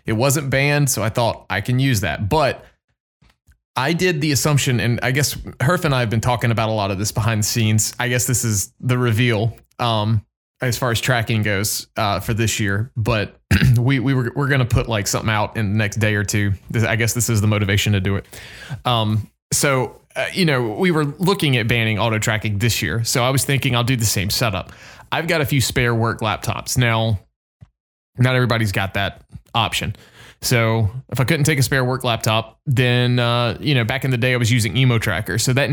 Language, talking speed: English, 225 wpm